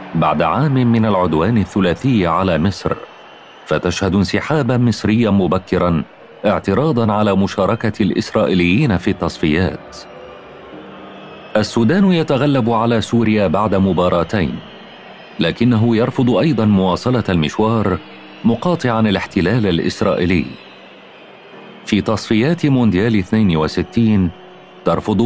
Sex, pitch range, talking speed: male, 90-120 Hz, 85 wpm